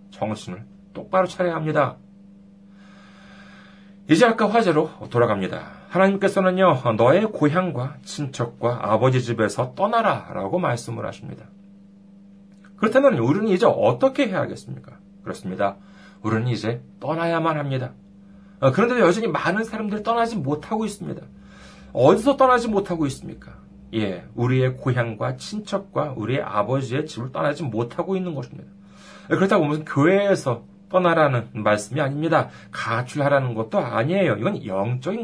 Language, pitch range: Korean, 140-200 Hz